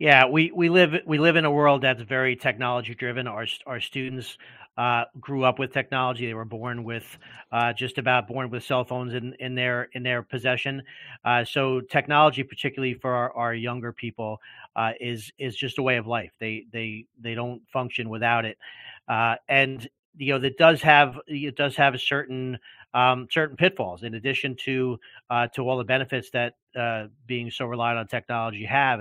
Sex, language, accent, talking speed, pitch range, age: male, English, American, 190 wpm, 120-135 Hz, 40-59